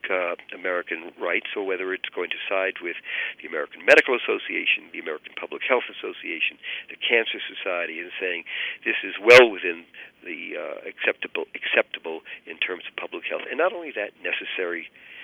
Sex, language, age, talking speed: male, English, 50-69, 165 wpm